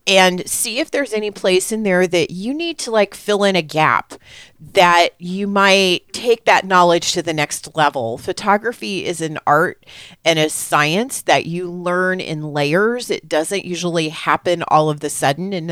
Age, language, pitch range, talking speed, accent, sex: 30-49, English, 150-185 Hz, 185 wpm, American, female